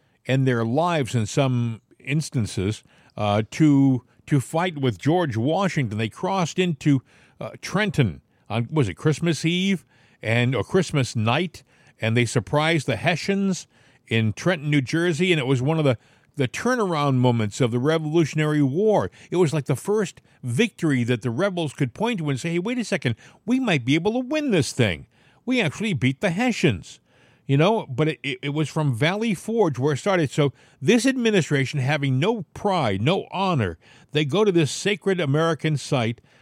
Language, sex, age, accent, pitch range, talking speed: English, male, 50-69, American, 120-165 Hz, 175 wpm